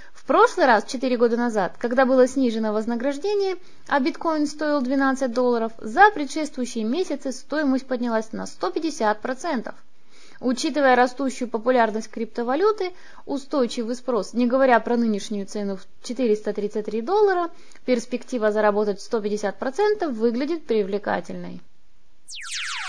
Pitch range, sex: 225-290 Hz, female